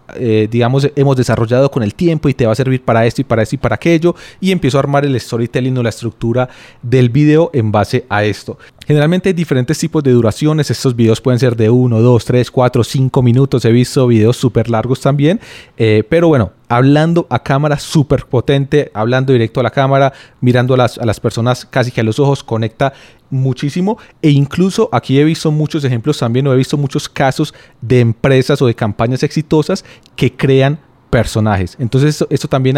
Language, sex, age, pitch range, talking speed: Spanish, male, 30-49, 120-145 Hz, 200 wpm